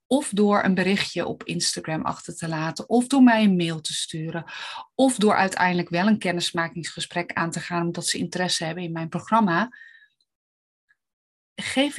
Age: 30-49